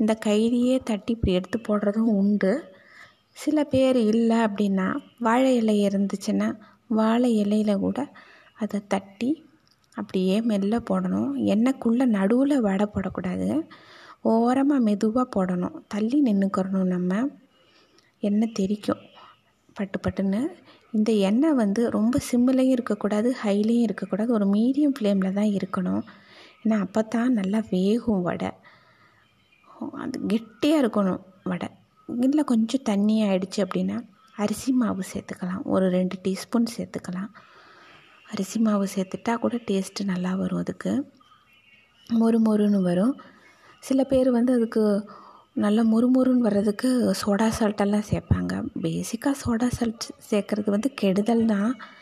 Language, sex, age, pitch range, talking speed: Tamil, female, 20-39, 200-250 Hz, 110 wpm